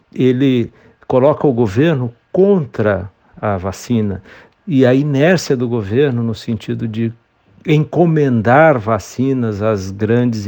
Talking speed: 110 wpm